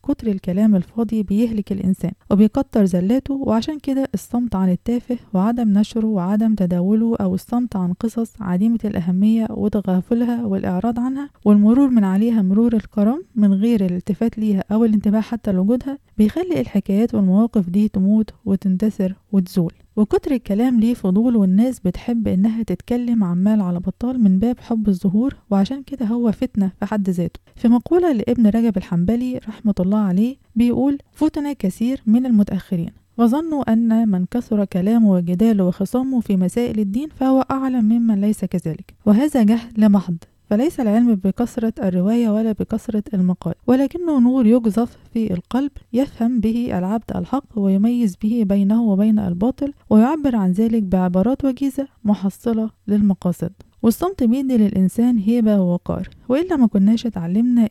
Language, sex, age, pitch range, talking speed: Arabic, female, 20-39, 195-240 Hz, 140 wpm